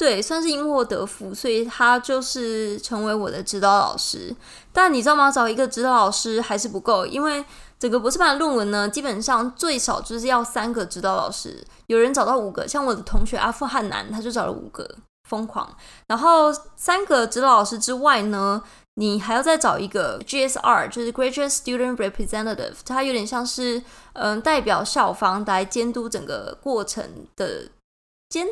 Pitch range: 215-270 Hz